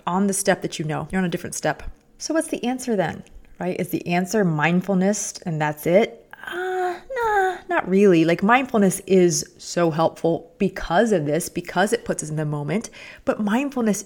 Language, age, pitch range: English, 30-49, 165-215 Hz